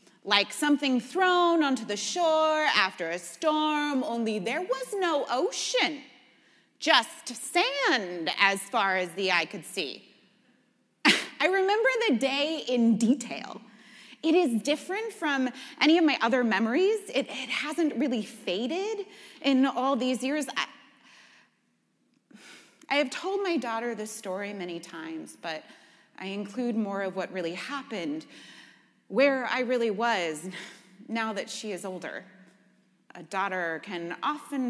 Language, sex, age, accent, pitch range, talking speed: English, female, 30-49, American, 200-290 Hz, 135 wpm